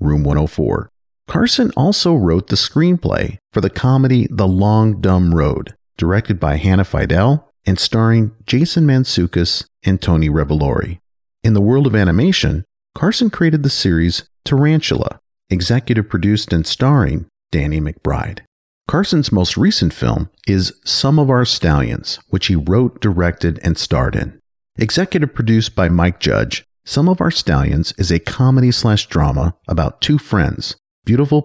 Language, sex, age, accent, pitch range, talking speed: English, male, 40-59, American, 85-125 Hz, 140 wpm